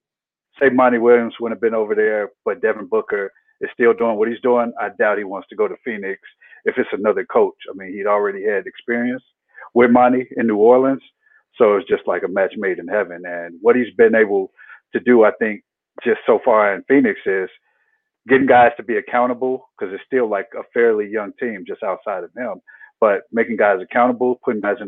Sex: male